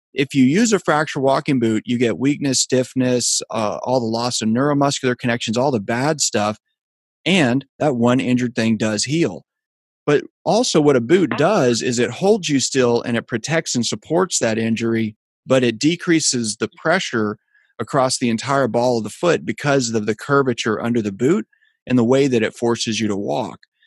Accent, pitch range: American, 115-140 Hz